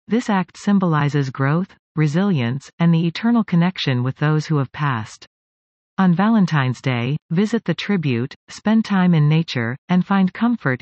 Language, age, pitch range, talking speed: English, 40-59, 135-180 Hz, 150 wpm